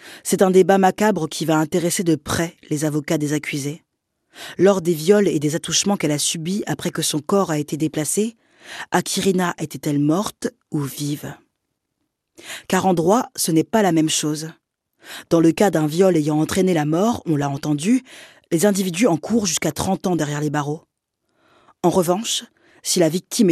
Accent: French